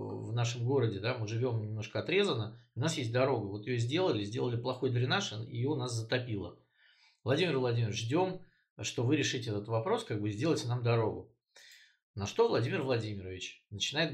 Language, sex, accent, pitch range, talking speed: Russian, male, native, 110-140 Hz, 170 wpm